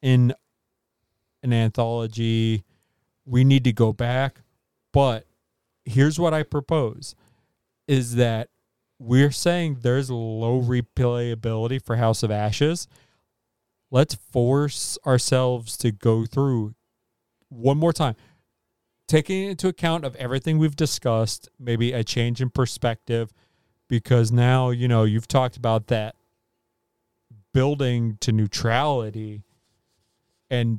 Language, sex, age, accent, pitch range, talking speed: English, male, 40-59, American, 115-140 Hz, 110 wpm